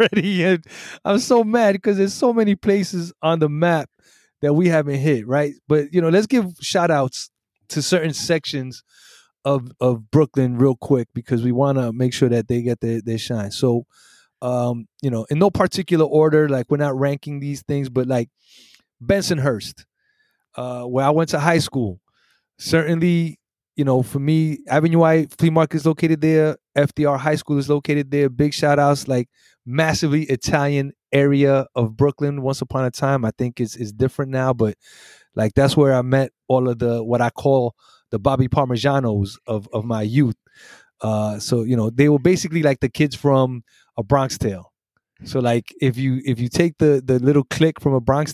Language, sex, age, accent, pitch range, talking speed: English, male, 20-39, American, 120-155 Hz, 185 wpm